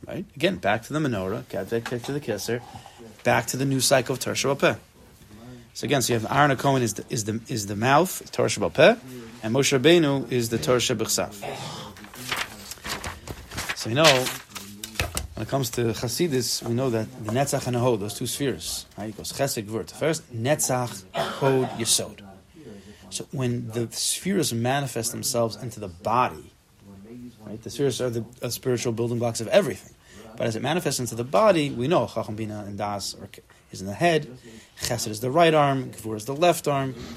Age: 30-49